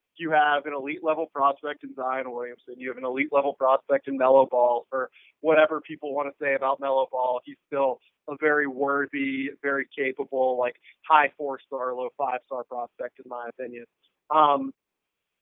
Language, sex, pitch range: English, male, 135-165 Hz